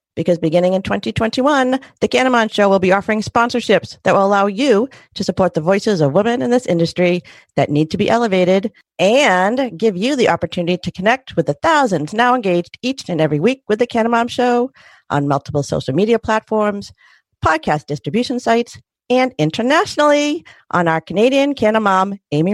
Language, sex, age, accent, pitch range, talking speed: English, female, 50-69, American, 155-235 Hz, 170 wpm